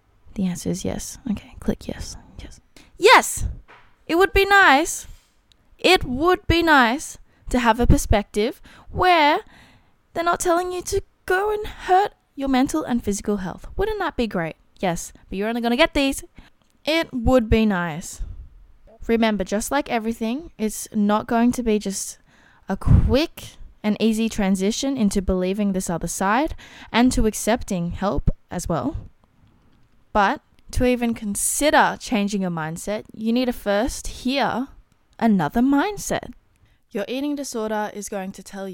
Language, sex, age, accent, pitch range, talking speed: English, female, 20-39, Australian, 190-260 Hz, 150 wpm